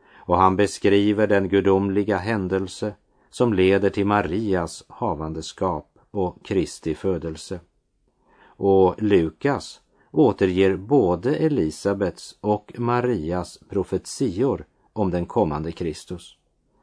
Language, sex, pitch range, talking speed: Polish, male, 90-105 Hz, 95 wpm